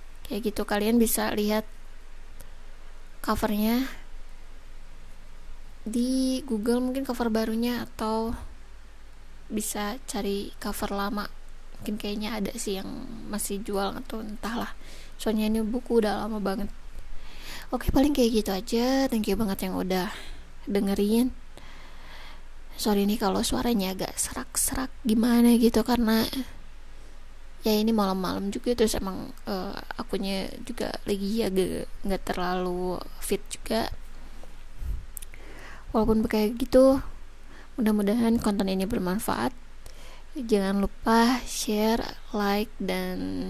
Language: Indonesian